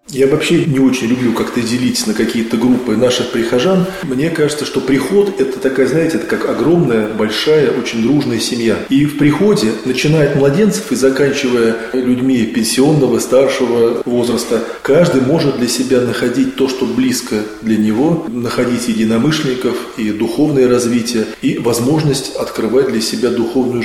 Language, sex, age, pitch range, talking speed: Russian, male, 20-39, 115-135 Hz, 145 wpm